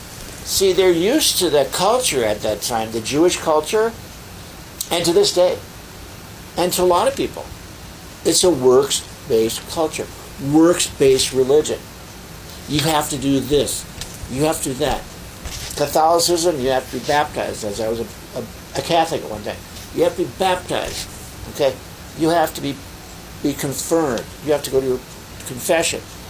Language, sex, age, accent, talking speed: English, male, 60-79, American, 170 wpm